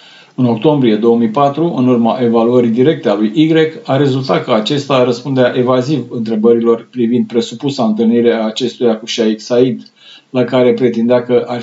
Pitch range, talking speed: 115-140 Hz, 155 wpm